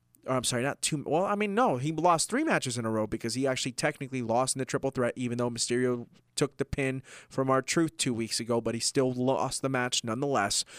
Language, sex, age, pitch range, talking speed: English, male, 20-39, 120-150 Hz, 240 wpm